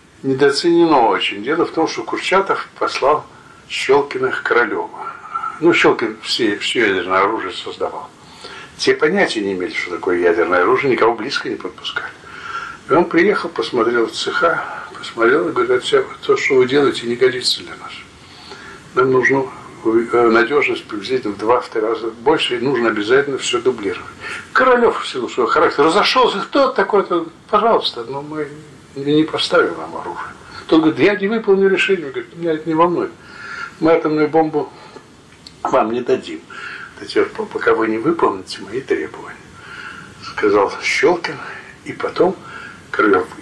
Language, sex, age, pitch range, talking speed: Russian, male, 60-79, 265-445 Hz, 145 wpm